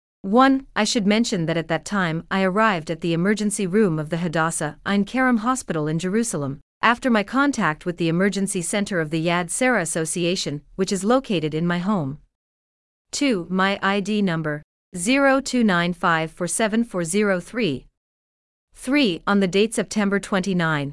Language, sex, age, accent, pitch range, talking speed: English, female, 40-59, American, 165-215 Hz, 145 wpm